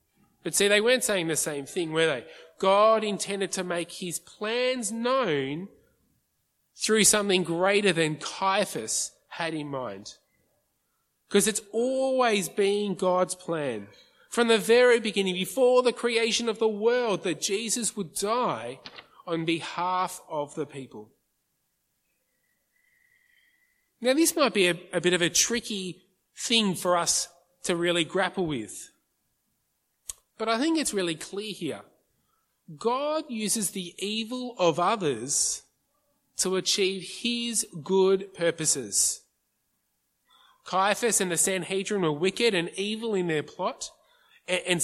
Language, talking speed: English, 130 wpm